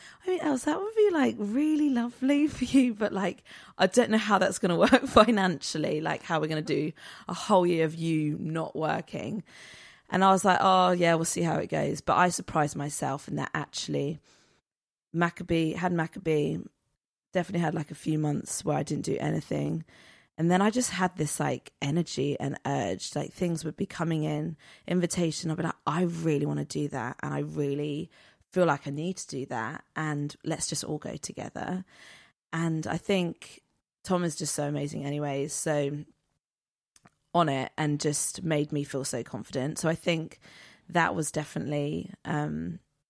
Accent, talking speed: British, 185 wpm